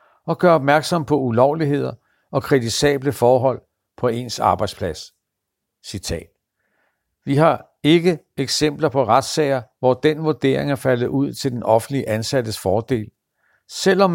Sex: male